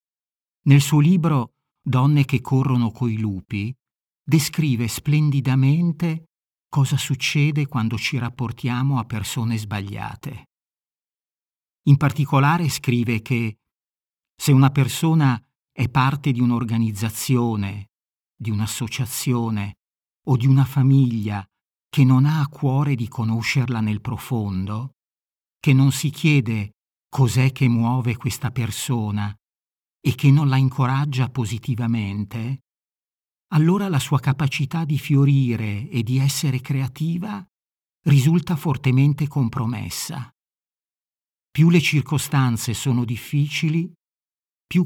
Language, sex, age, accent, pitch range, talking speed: Italian, male, 50-69, native, 115-140 Hz, 105 wpm